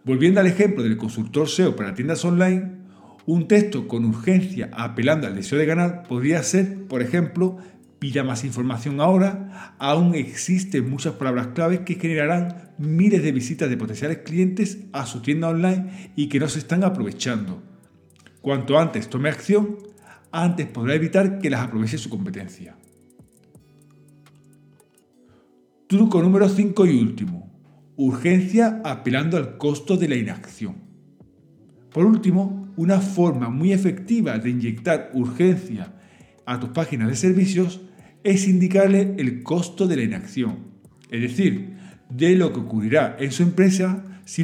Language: Spanish